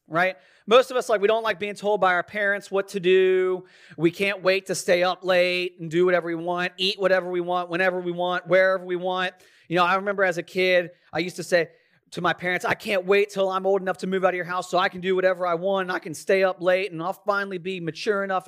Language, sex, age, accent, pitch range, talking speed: English, male, 30-49, American, 160-190 Hz, 275 wpm